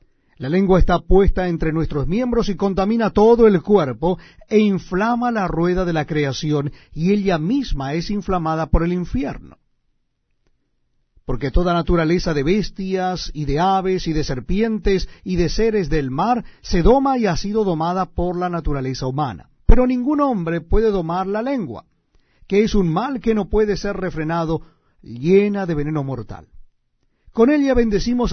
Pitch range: 155-215 Hz